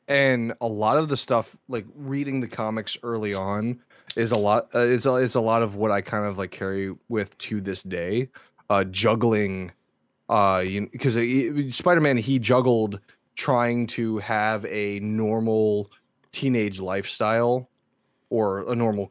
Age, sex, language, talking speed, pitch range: 20-39, male, English, 155 wpm, 100-120 Hz